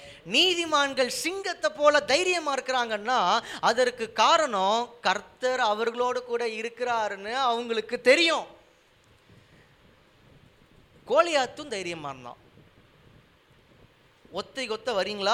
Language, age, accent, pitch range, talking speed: Tamil, 20-39, native, 195-285 Hz, 45 wpm